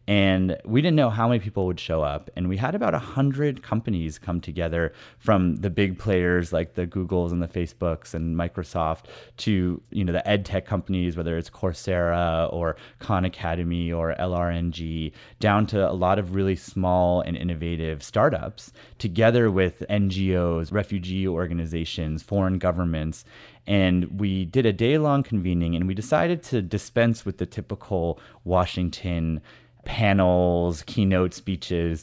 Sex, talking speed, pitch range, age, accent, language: male, 150 wpm, 85-100 Hz, 30-49, American, English